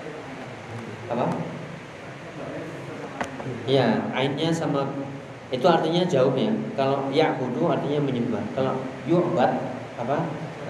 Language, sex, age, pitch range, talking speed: Indonesian, male, 30-49, 115-145 Hz, 110 wpm